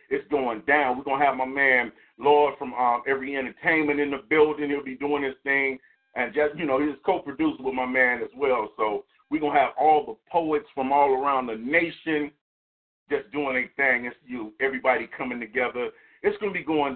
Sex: male